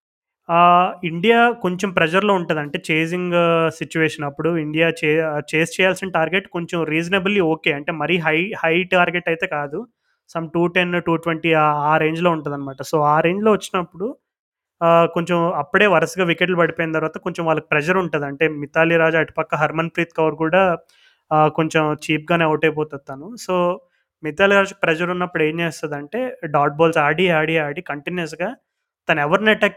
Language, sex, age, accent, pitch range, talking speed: Telugu, male, 20-39, native, 155-185 Hz, 135 wpm